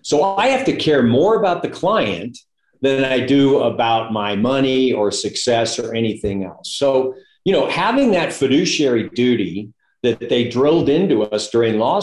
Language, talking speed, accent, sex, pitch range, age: English, 170 wpm, American, male, 120-190 Hz, 50-69